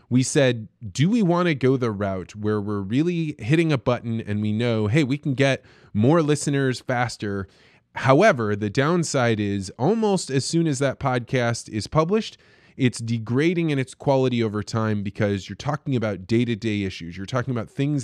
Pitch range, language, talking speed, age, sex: 105-140 Hz, English, 180 wpm, 20-39, male